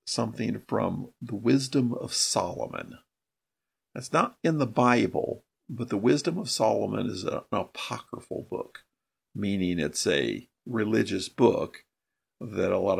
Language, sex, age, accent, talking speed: English, male, 50-69, American, 130 wpm